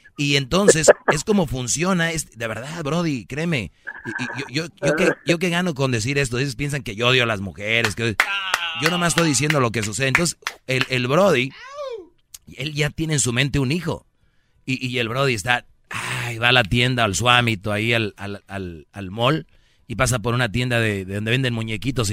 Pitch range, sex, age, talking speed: 115-150 Hz, male, 30-49, 210 wpm